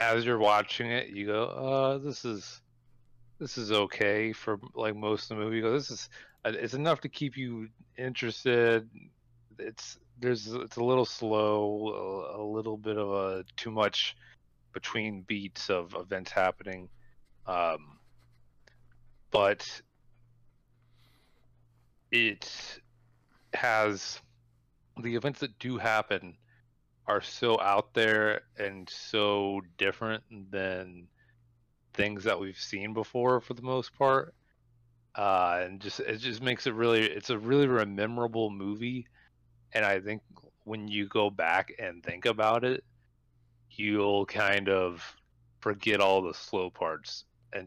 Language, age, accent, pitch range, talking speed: English, 30-49, American, 100-120 Hz, 130 wpm